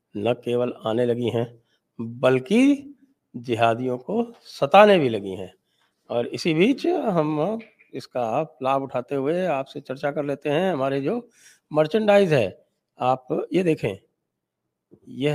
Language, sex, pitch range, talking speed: English, male, 110-150 Hz, 130 wpm